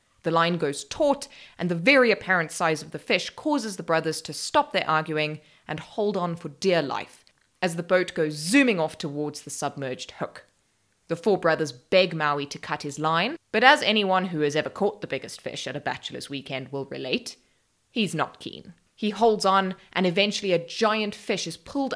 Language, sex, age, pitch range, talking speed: English, female, 20-39, 150-205 Hz, 200 wpm